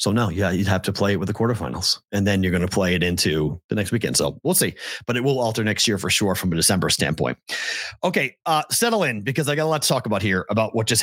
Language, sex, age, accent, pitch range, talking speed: English, male, 30-49, American, 105-150 Hz, 290 wpm